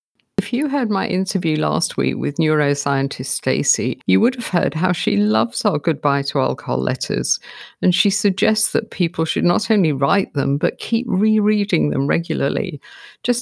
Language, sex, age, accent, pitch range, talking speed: English, female, 50-69, British, 150-205 Hz, 170 wpm